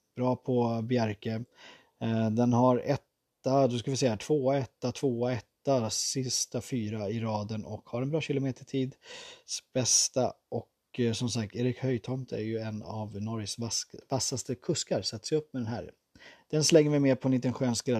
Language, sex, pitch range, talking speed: Swedish, male, 115-135 Hz, 165 wpm